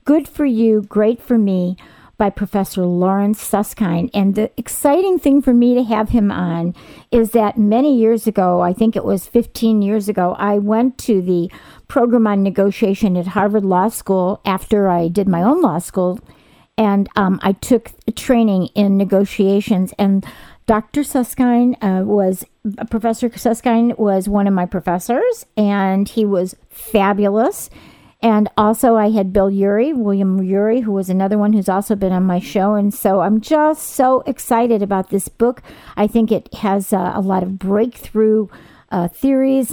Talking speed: 170 wpm